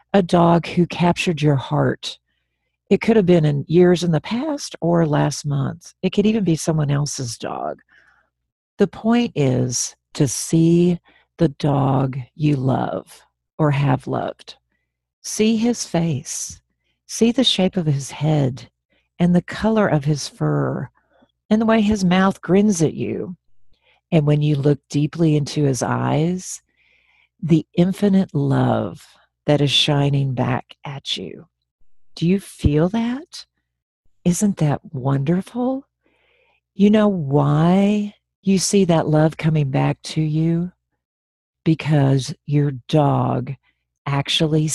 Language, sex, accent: English, female, American